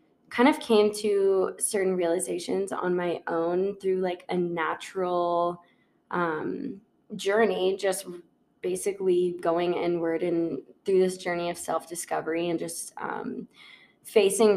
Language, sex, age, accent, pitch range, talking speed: English, female, 20-39, American, 170-200 Hz, 120 wpm